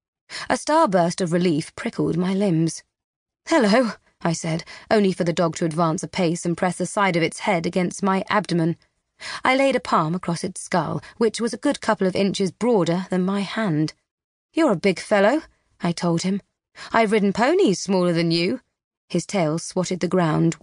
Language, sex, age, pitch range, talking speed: English, female, 30-49, 170-215 Hz, 185 wpm